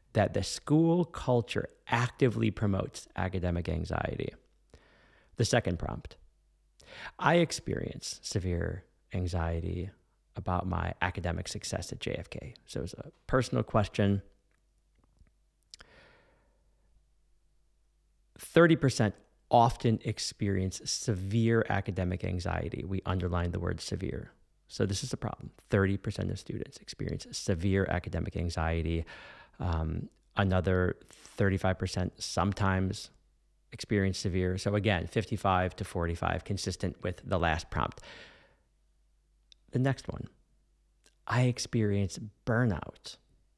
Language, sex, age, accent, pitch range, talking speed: English, male, 40-59, American, 85-110 Hz, 100 wpm